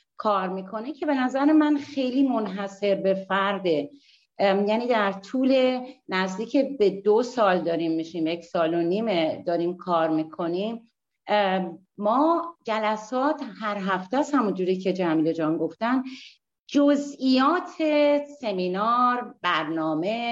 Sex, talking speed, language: female, 115 wpm, Persian